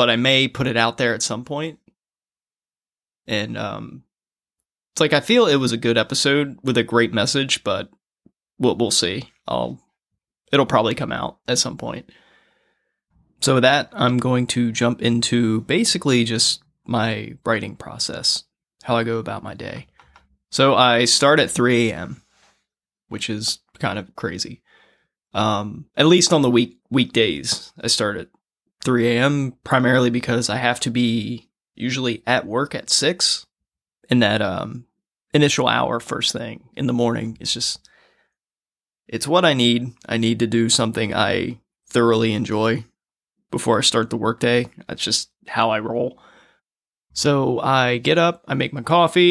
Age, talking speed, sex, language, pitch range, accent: 20-39, 160 wpm, male, English, 115-130 Hz, American